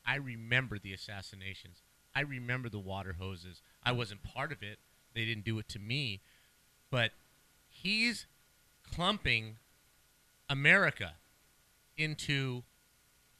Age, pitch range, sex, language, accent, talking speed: 30-49, 110-150 Hz, male, English, American, 110 wpm